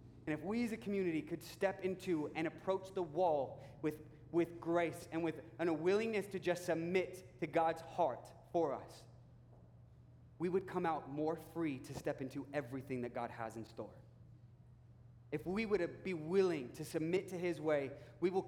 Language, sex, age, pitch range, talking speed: English, male, 20-39, 120-170 Hz, 180 wpm